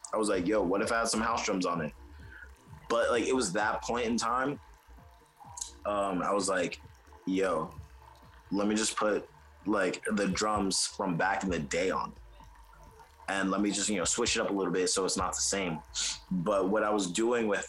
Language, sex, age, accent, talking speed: English, male, 20-39, American, 215 wpm